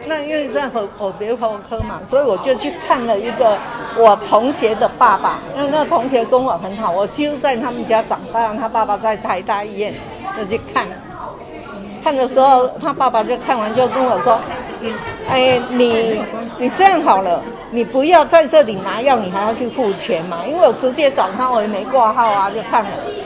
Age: 50-69